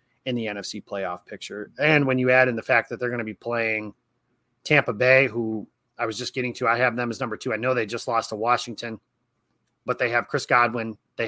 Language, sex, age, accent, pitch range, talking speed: English, male, 30-49, American, 110-135 Hz, 240 wpm